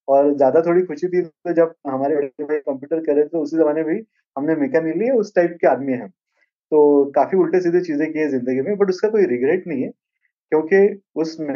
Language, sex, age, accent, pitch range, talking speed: Hindi, male, 20-39, native, 125-165 Hz, 85 wpm